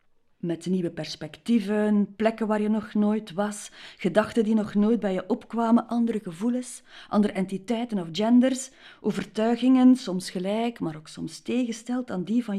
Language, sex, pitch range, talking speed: Dutch, female, 180-240 Hz, 155 wpm